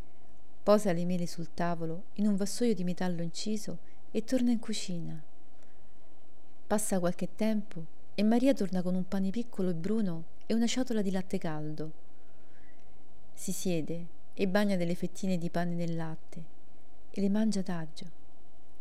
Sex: female